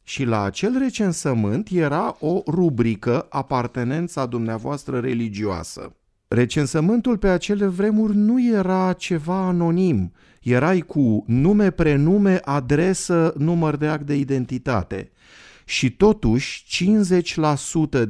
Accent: native